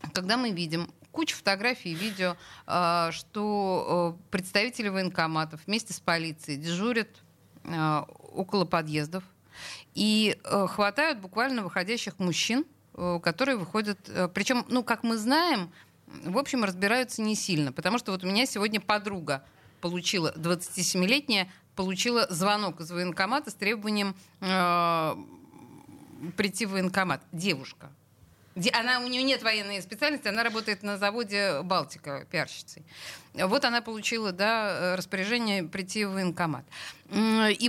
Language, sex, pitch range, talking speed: Russian, female, 175-230 Hz, 115 wpm